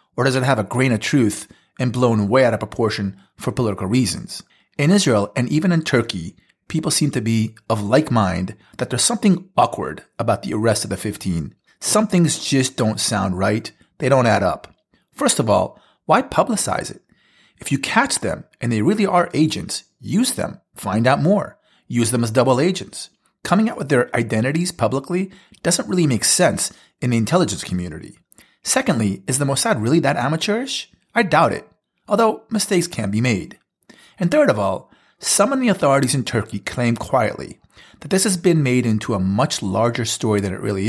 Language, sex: English, male